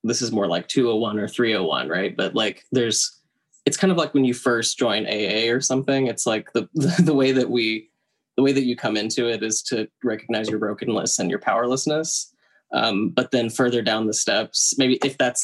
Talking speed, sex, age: 210 wpm, male, 10-29